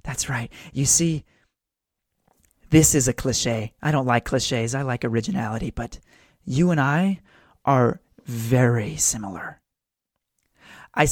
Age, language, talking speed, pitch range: 30-49, English, 125 wpm, 125-180 Hz